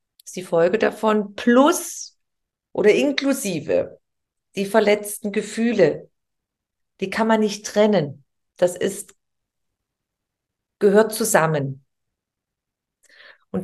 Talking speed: 85 wpm